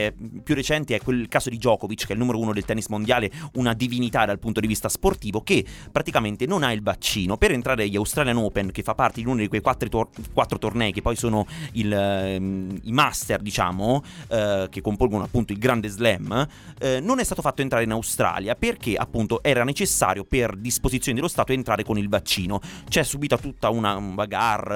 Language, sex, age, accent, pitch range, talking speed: Italian, male, 30-49, native, 110-140 Hz, 205 wpm